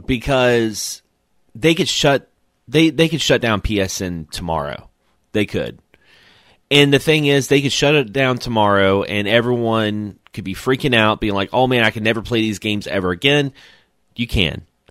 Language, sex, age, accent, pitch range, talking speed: English, male, 30-49, American, 95-125 Hz, 175 wpm